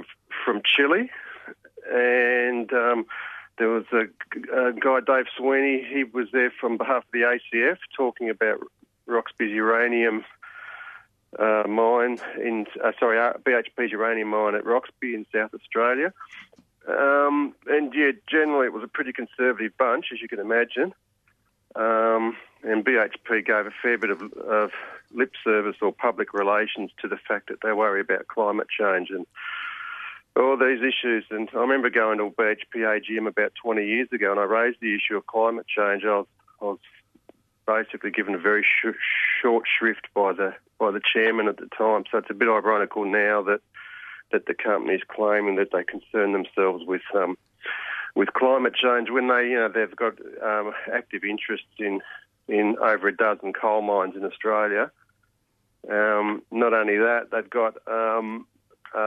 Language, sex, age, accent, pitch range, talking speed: English, male, 40-59, Australian, 105-125 Hz, 165 wpm